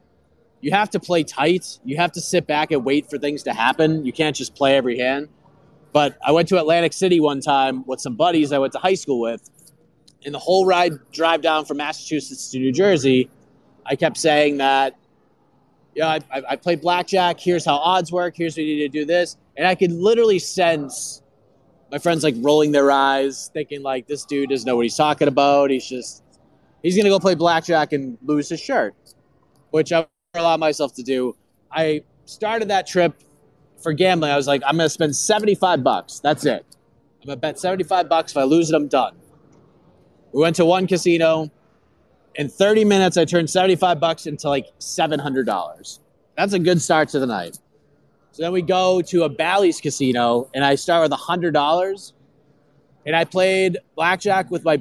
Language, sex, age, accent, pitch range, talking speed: English, male, 30-49, American, 140-175 Hz, 195 wpm